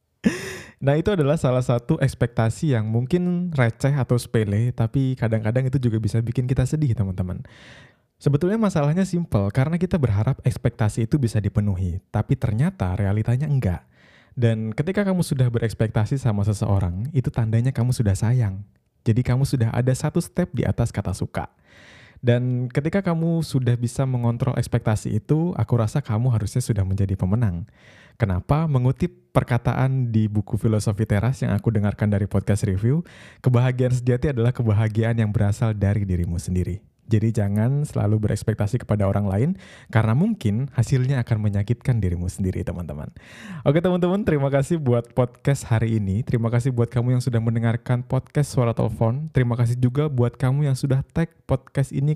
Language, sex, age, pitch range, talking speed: Indonesian, male, 20-39, 110-130 Hz, 155 wpm